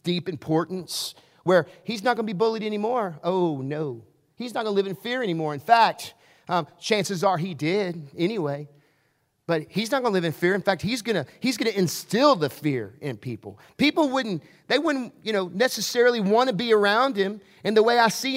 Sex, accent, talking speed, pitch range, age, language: male, American, 200 wpm, 150-220 Hz, 40-59, English